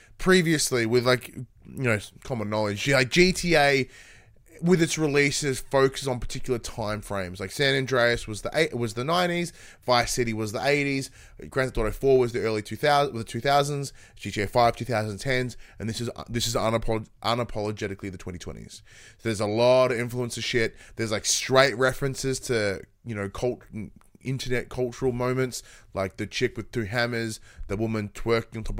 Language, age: English, 20-39